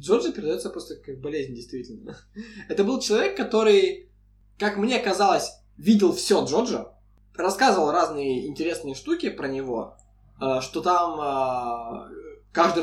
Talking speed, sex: 115 wpm, male